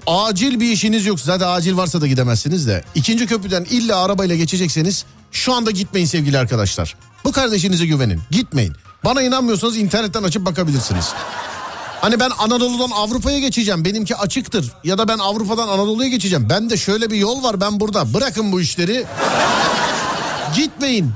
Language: Turkish